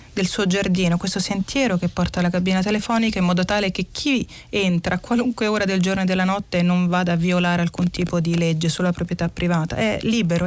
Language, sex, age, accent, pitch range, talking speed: Italian, female, 30-49, native, 180-220 Hz, 210 wpm